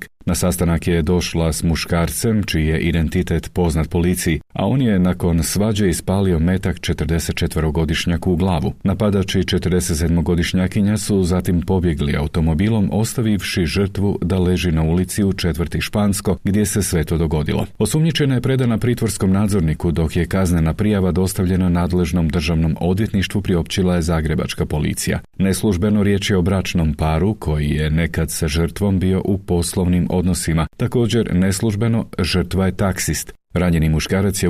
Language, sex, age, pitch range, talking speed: Croatian, male, 40-59, 85-100 Hz, 140 wpm